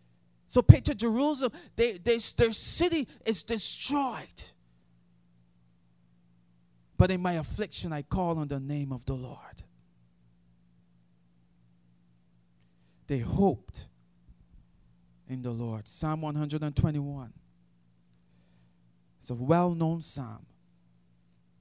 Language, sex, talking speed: English, male, 85 wpm